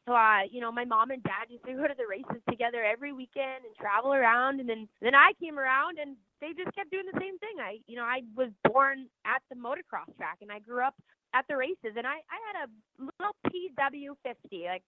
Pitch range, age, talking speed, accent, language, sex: 225-290 Hz, 20-39, 240 wpm, American, English, female